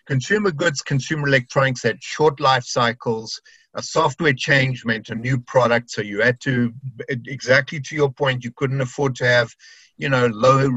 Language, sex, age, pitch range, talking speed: English, male, 50-69, 125-145 Hz, 175 wpm